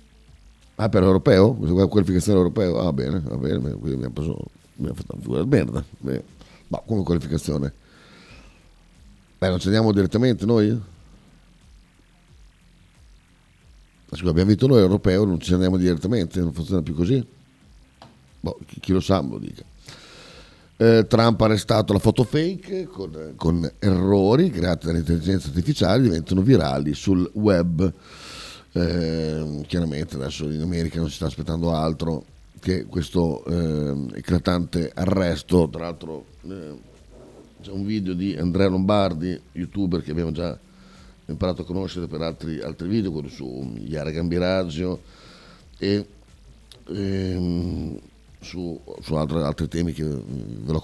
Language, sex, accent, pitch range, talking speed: Italian, male, native, 80-95 Hz, 130 wpm